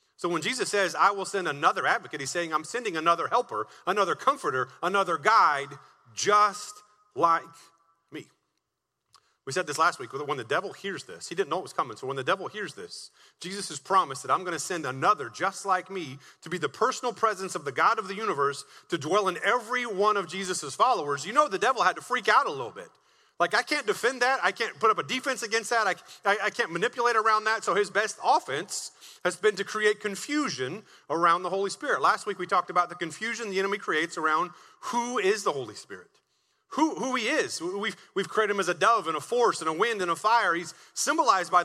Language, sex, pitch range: English, male, 185-235 Hz